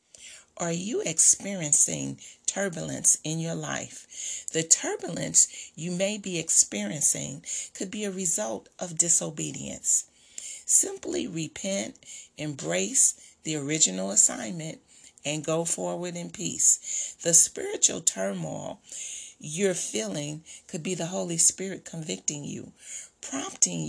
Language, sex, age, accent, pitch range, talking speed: English, female, 40-59, American, 155-195 Hz, 110 wpm